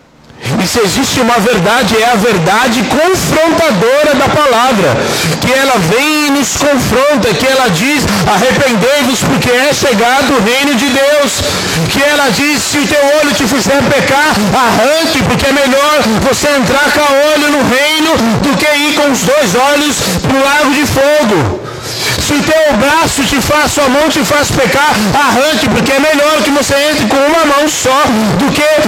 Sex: male